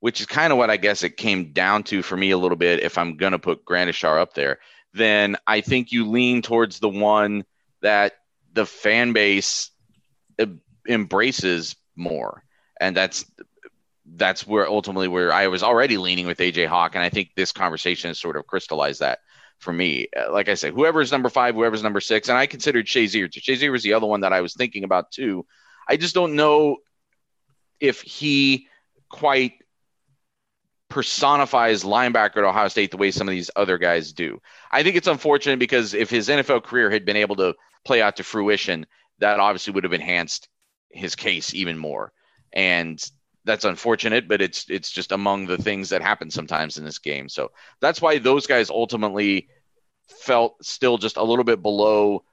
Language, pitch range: English, 90-115 Hz